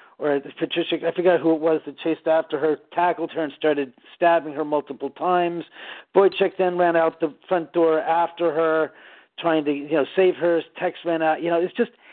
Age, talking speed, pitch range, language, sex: 50-69, 205 wpm, 145-170 Hz, English, male